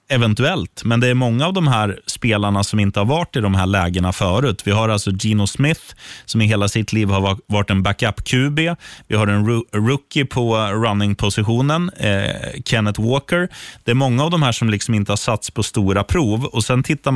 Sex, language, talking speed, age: male, Swedish, 215 wpm, 30-49